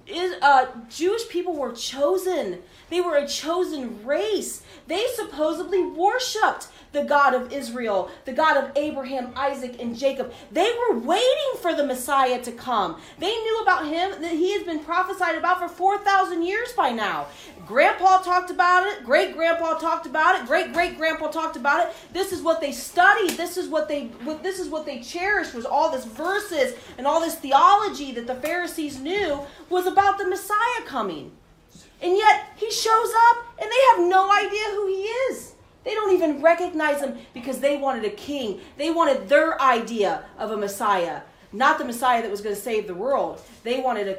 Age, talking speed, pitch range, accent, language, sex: 30-49, 185 wpm, 245-360 Hz, American, English, female